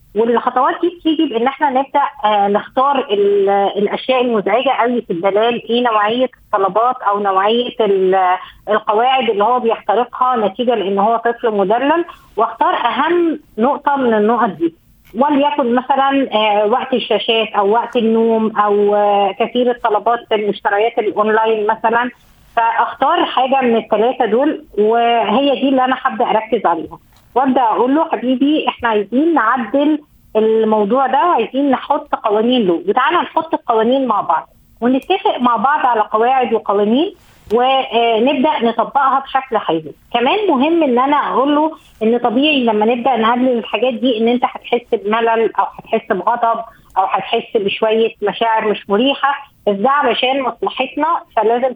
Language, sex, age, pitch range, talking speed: Arabic, female, 20-39, 215-270 Hz, 135 wpm